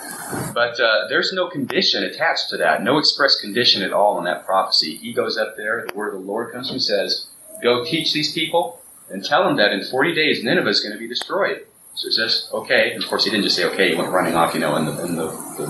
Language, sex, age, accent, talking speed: English, male, 30-49, American, 265 wpm